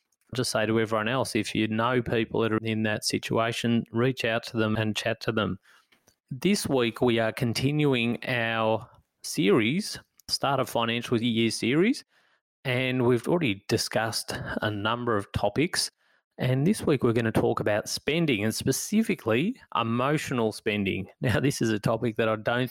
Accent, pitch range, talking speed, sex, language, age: Australian, 110-135 Hz, 165 wpm, male, English, 30-49